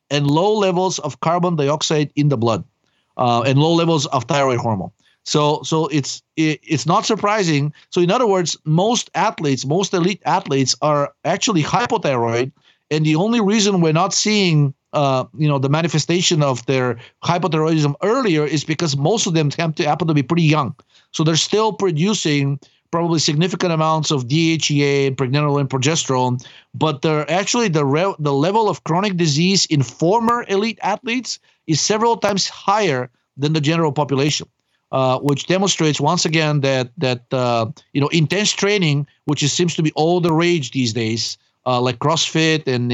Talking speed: 170 wpm